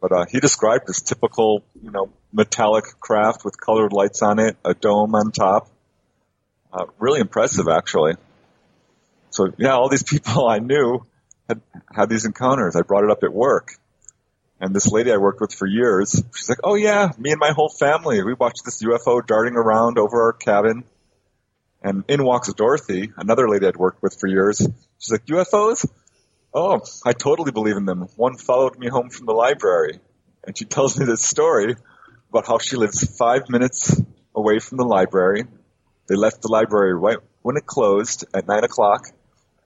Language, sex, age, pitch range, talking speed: English, male, 30-49, 105-130 Hz, 180 wpm